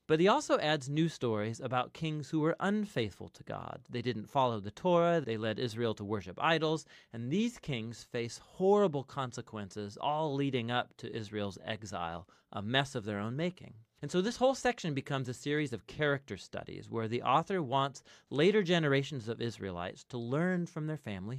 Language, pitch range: English, 115-170 Hz